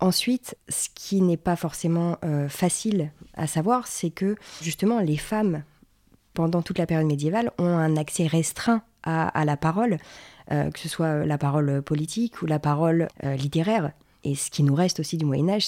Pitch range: 155-185 Hz